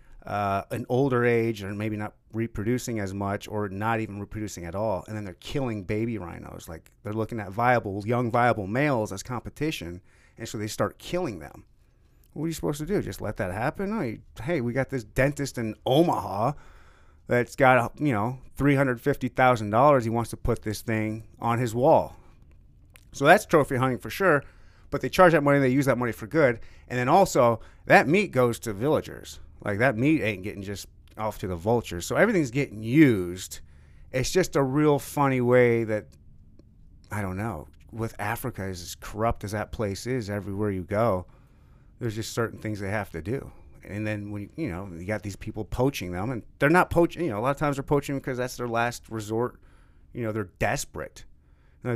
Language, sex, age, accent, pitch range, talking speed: English, male, 30-49, American, 100-130 Hz, 200 wpm